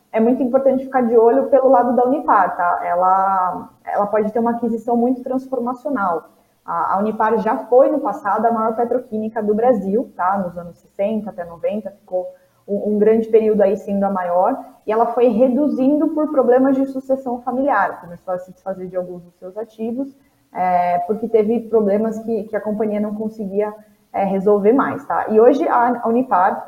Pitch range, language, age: 190-245 Hz, Portuguese, 20-39